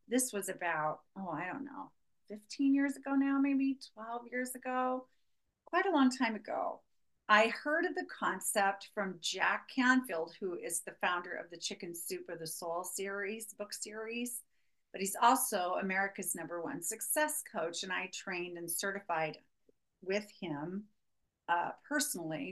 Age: 40-59